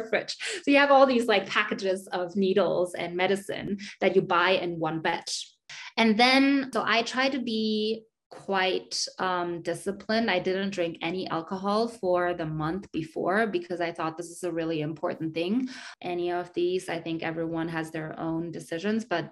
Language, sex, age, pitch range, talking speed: English, female, 20-39, 175-225 Hz, 175 wpm